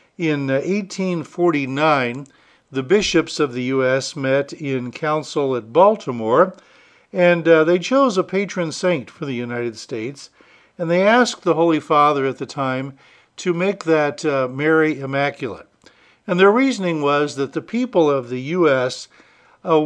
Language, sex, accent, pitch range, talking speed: English, male, American, 135-165 Hz, 150 wpm